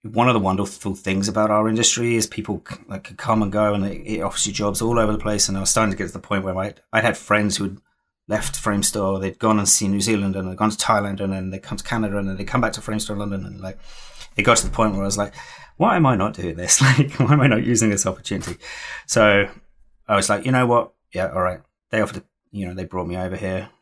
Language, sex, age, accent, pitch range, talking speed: English, male, 30-49, British, 95-110 Hz, 280 wpm